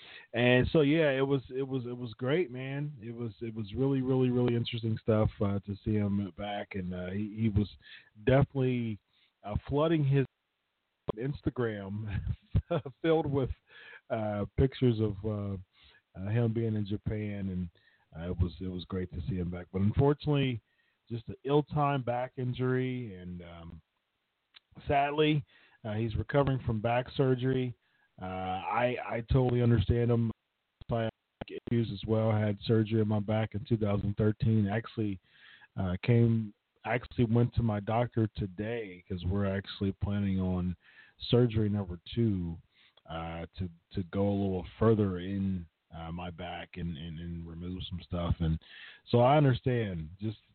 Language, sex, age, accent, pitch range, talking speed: English, male, 40-59, American, 95-120 Hz, 150 wpm